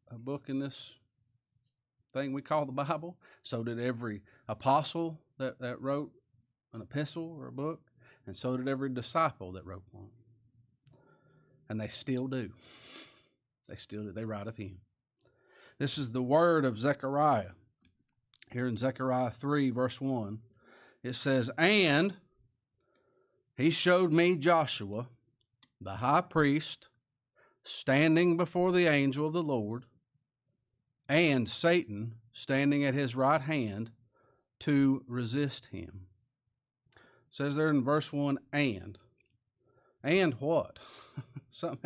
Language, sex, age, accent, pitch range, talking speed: English, male, 40-59, American, 115-145 Hz, 130 wpm